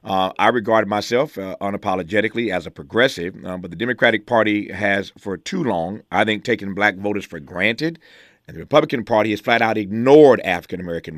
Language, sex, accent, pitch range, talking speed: English, male, American, 105-145 Hz, 185 wpm